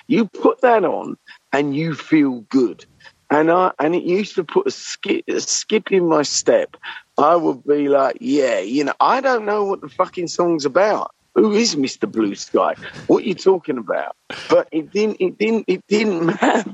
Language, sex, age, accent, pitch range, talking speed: English, male, 50-69, British, 140-185 Hz, 195 wpm